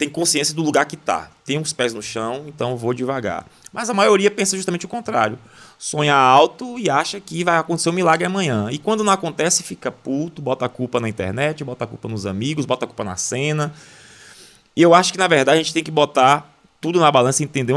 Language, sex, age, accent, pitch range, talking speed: Portuguese, male, 20-39, Brazilian, 100-155 Hz, 230 wpm